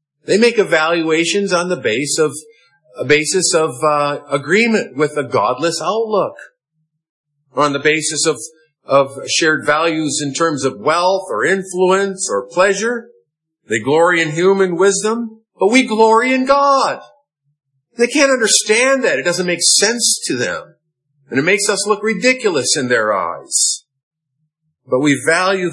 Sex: male